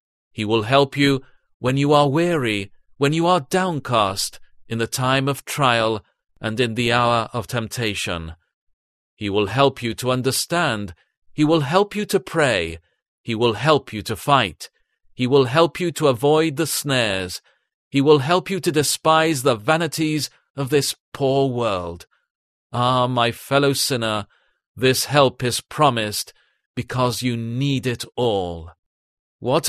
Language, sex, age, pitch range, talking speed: English, male, 40-59, 110-150 Hz, 150 wpm